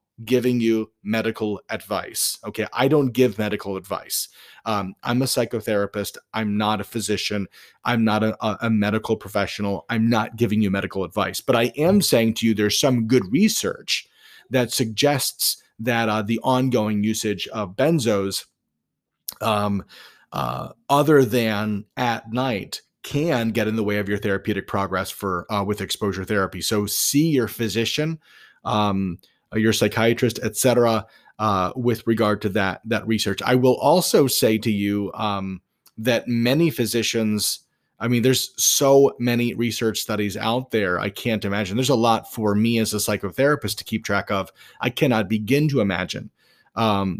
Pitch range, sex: 105-120 Hz, male